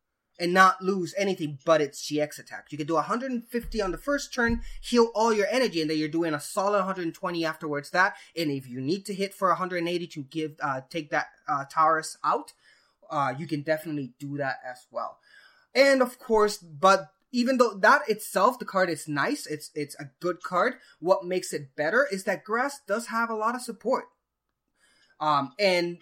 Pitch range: 150-205 Hz